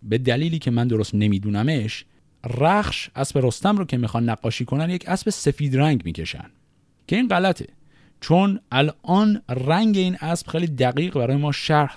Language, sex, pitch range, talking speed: Persian, male, 110-155 Hz, 160 wpm